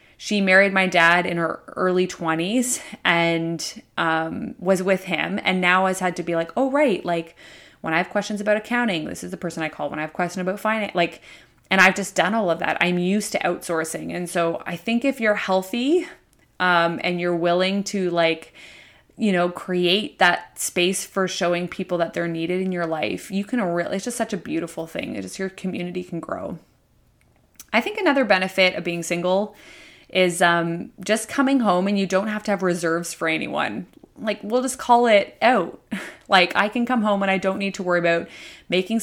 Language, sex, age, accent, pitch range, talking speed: English, female, 20-39, American, 175-210 Hz, 210 wpm